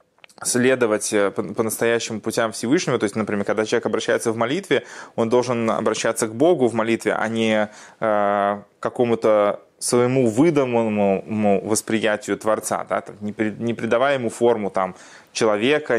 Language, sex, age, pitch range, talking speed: Russian, male, 20-39, 110-130 Hz, 130 wpm